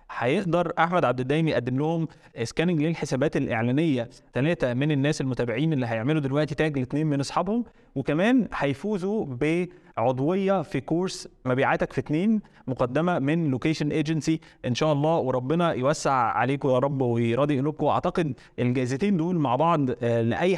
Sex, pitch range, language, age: male, 135-165 Hz, Arabic, 20-39